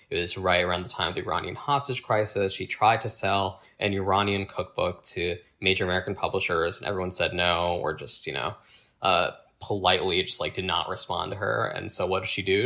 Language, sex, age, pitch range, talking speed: English, male, 20-39, 90-110 Hz, 215 wpm